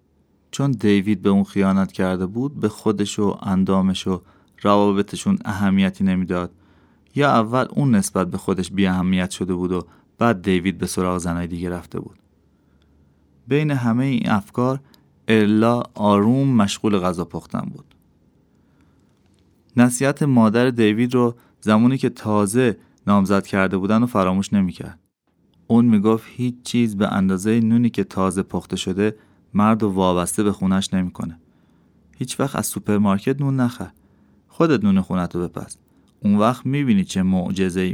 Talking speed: 140 wpm